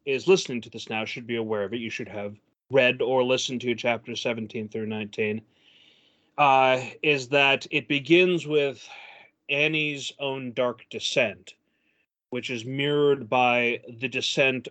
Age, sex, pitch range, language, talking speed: 30-49, male, 115-145 Hz, English, 150 wpm